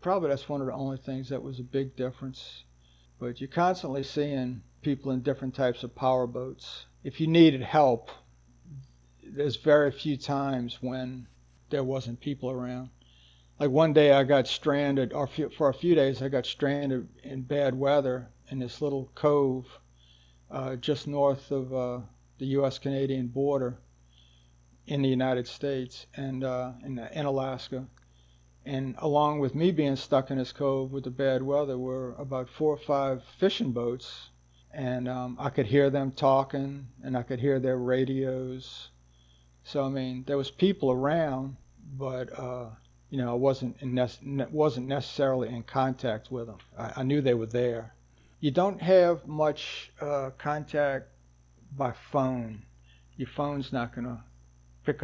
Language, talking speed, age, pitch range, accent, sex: English, 160 wpm, 50-69, 120-140 Hz, American, male